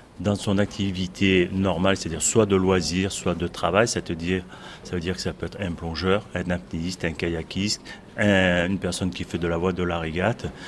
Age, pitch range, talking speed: 30-49, 90-110 Hz, 190 wpm